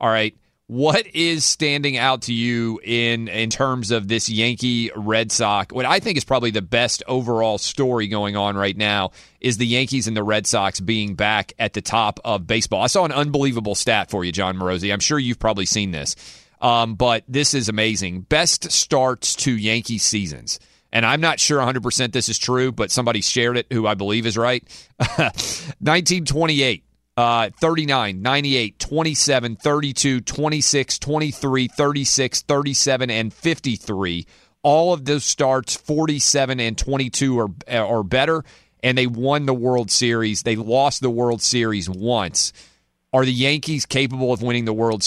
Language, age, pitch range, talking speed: English, 30-49, 110-135 Hz, 170 wpm